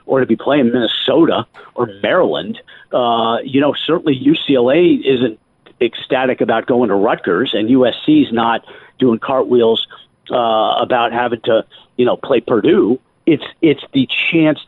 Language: English